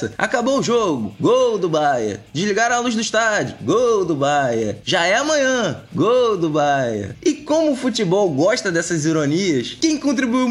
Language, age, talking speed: Portuguese, 20-39, 165 wpm